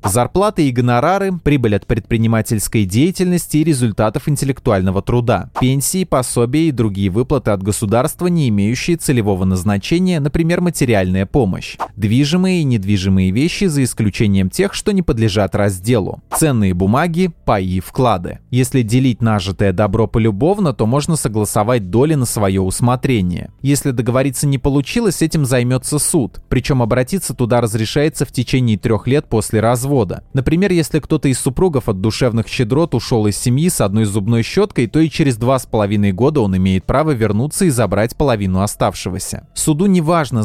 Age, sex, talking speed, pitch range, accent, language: 20-39, male, 150 wpm, 105-150 Hz, native, Russian